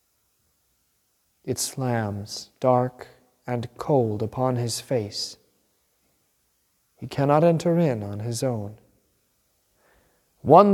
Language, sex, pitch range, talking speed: English, male, 110-145 Hz, 90 wpm